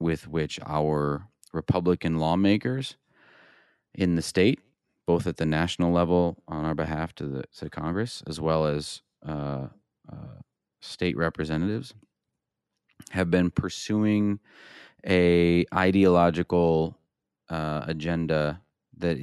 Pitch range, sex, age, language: 75-90 Hz, male, 30-49, English